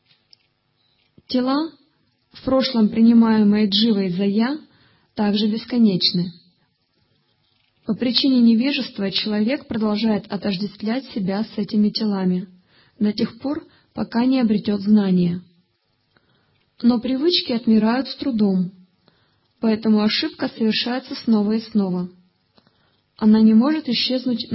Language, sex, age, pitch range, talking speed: Russian, female, 20-39, 180-240 Hz, 100 wpm